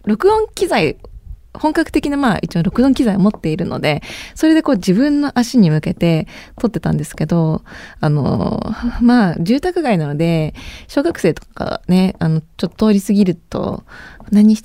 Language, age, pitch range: Japanese, 20-39, 180-255 Hz